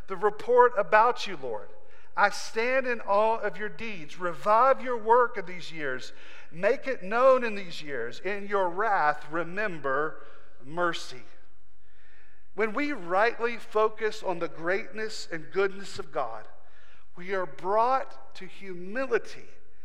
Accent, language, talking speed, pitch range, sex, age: American, English, 135 wpm, 180-265 Hz, male, 50-69